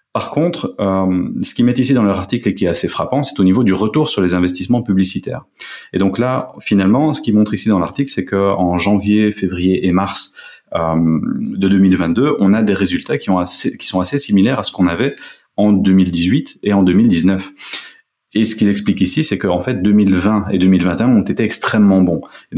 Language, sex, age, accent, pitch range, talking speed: French, male, 30-49, French, 90-105 Hz, 210 wpm